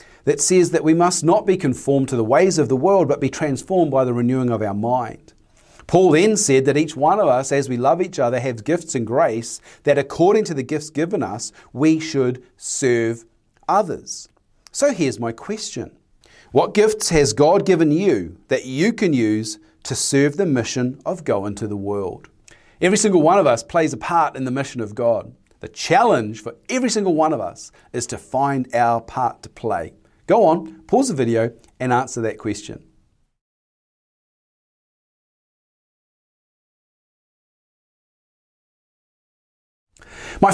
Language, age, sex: English, 40-59, male